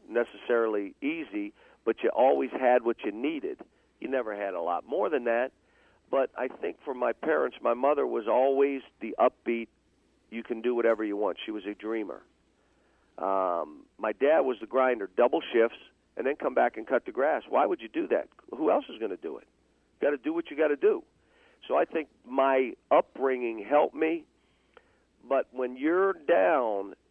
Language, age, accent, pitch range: English, 50-69, American, 110-160 Hz